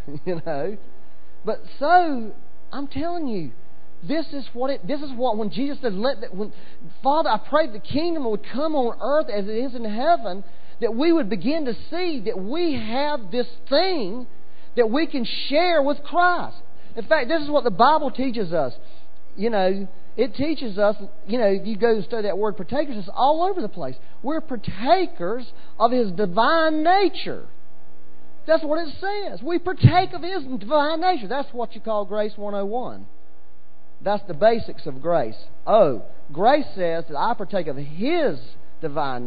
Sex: male